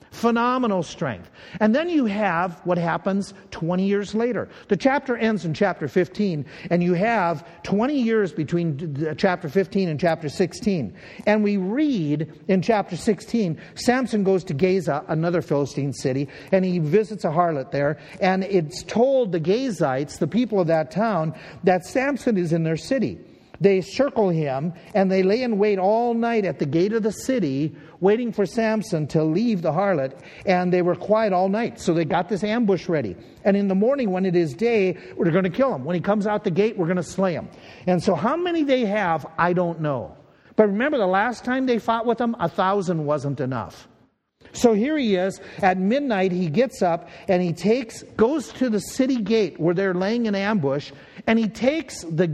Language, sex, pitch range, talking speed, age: English, male, 170-225 Hz, 195 wpm, 50-69